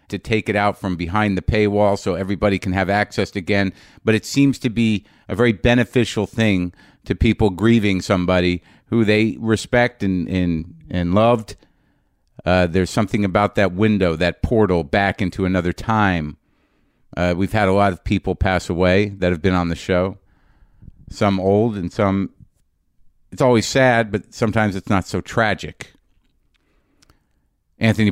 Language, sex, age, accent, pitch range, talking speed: English, male, 50-69, American, 90-105 Hz, 160 wpm